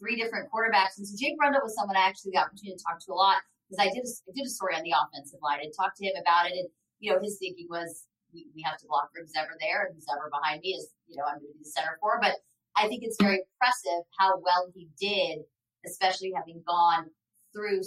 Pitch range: 170-205 Hz